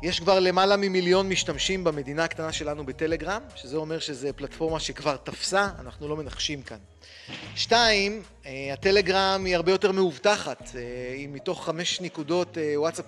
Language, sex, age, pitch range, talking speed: Hebrew, male, 30-49, 145-180 Hz, 120 wpm